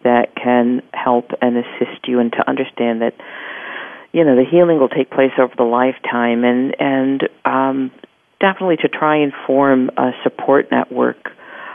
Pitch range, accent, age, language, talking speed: 125-160 Hz, American, 50-69, English, 160 wpm